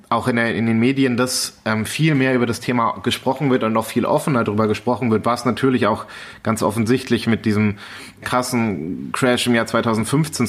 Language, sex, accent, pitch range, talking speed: German, male, German, 110-125 Hz, 190 wpm